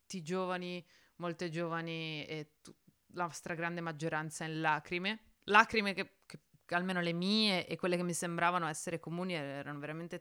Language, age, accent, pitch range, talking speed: Italian, 20-39, native, 150-175 Hz, 165 wpm